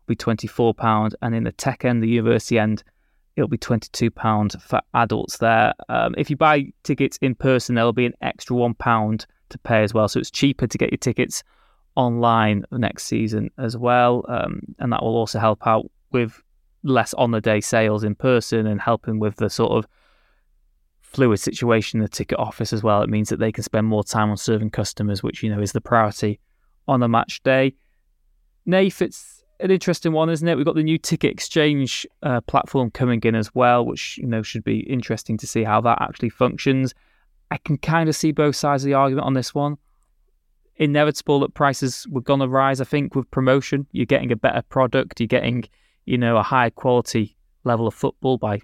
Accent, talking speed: British, 200 wpm